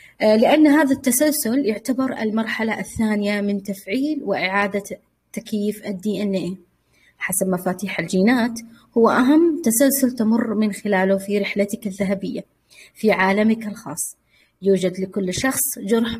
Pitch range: 195-240 Hz